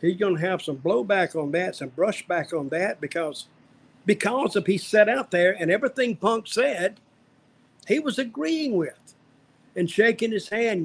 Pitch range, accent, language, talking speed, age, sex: 165-205 Hz, American, English, 170 wpm, 50-69, male